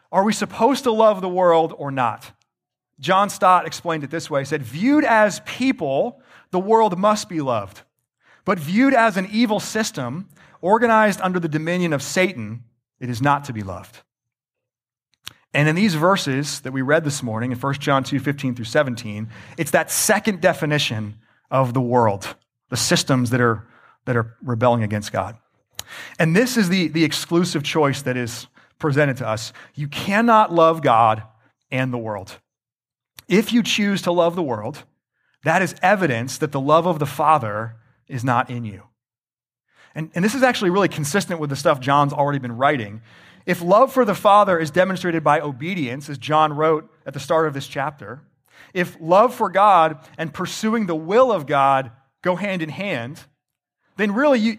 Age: 30-49